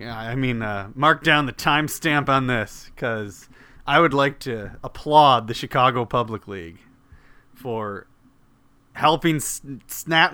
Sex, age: male, 30-49